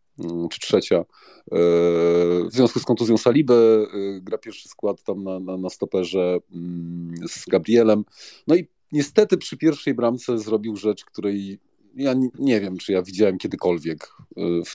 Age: 40-59